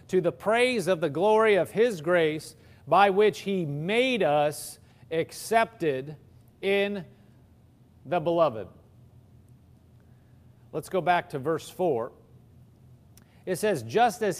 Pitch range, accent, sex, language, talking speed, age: 120-180 Hz, American, male, English, 115 wpm, 40-59